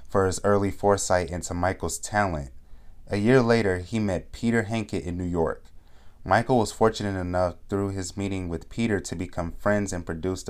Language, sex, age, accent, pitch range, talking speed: English, male, 20-39, American, 85-110 Hz, 175 wpm